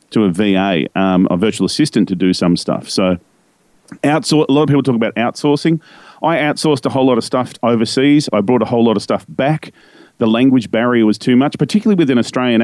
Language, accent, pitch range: English, Australian, 95-130 Hz